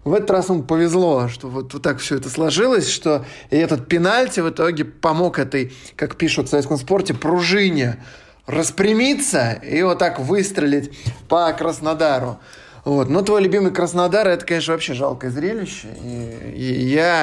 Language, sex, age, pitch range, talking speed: Russian, male, 20-39, 145-195 Hz, 145 wpm